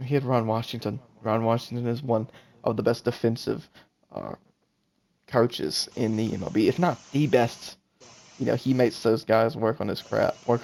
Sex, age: male, 20-39